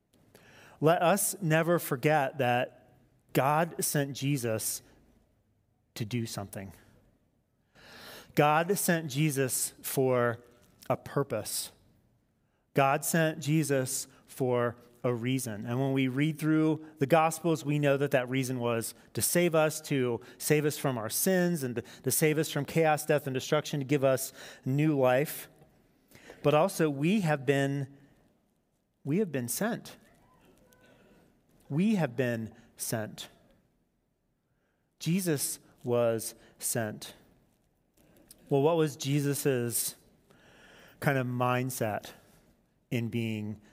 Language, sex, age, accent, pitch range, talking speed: English, male, 40-59, American, 125-150 Hz, 115 wpm